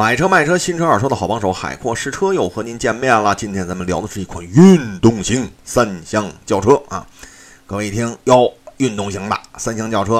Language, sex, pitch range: Chinese, male, 100-140 Hz